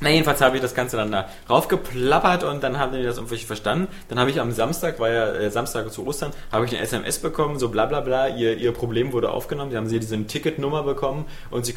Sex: male